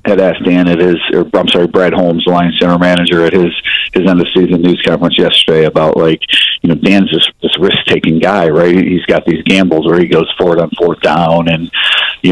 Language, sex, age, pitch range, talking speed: English, male, 40-59, 85-100 Hz, 230 wpm